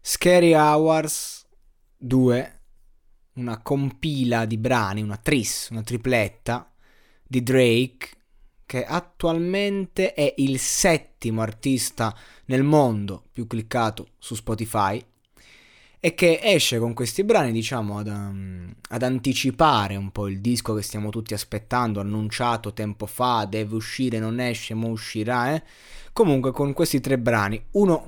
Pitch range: 110-130 Hz